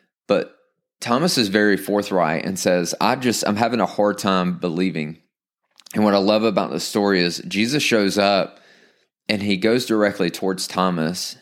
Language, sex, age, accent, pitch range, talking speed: English, male, 20-39, American, 90-110 Hz, 170 wpm